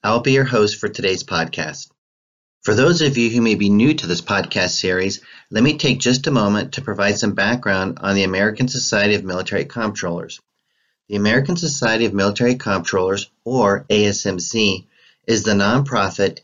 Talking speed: 170 wpm